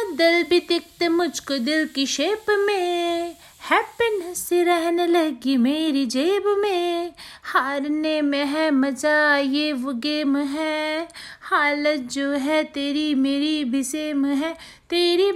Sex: female